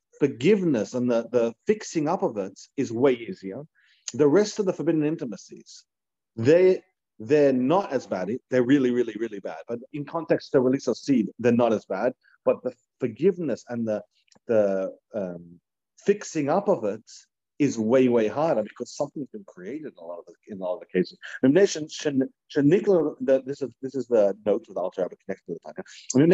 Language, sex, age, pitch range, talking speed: English, male, 40-59, 120-150 Hz, 150 wpm